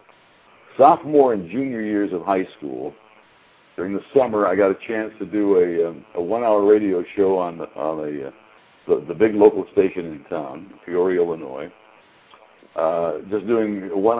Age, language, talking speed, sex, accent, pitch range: 60-79, English, 175 wpm, male, American, 90-125 Hz